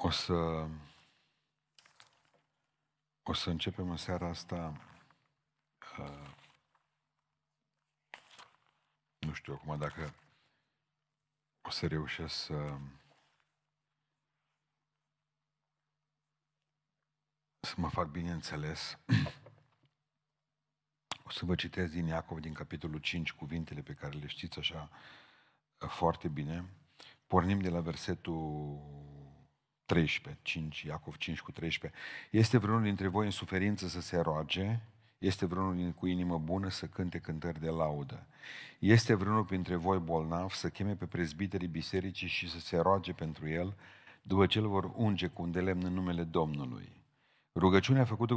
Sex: male